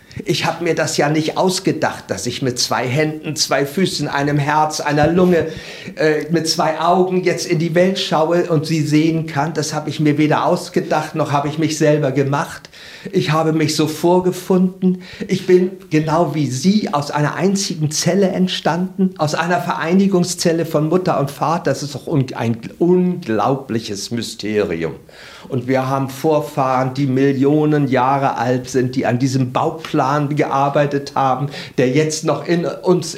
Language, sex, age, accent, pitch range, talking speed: German, male, 50-69, German, 135-170 Hz, 165 wpm